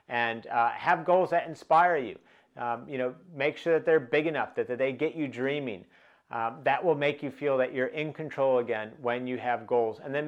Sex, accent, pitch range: male, American, 120-150 Hz